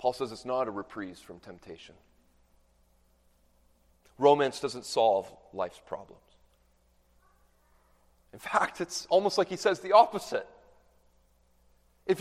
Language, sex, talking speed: English, male, 115 wpm